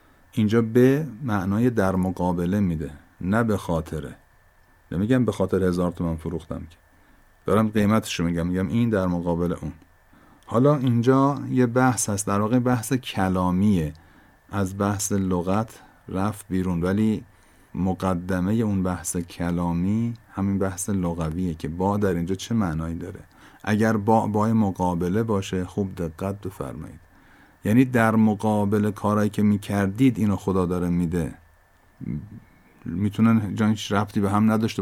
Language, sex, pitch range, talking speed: Persian, male, 90-110 Hz, 140 wpm